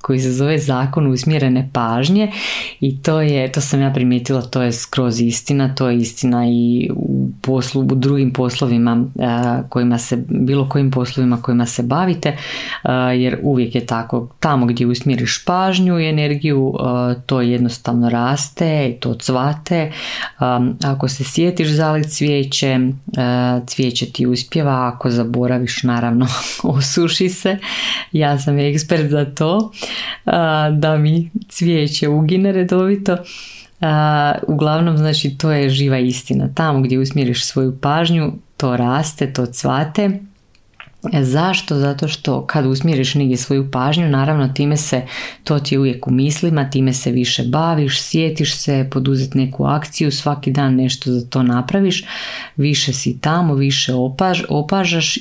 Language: Croatian